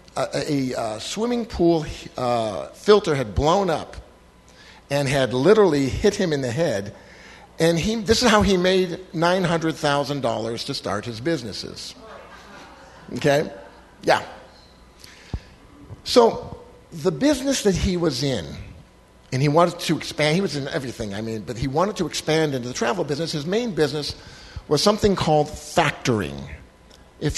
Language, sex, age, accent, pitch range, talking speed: English, male, 50-69, American, 125-175 Hz, 145 wpm